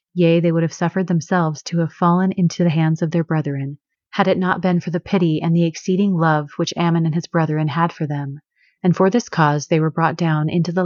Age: 30-49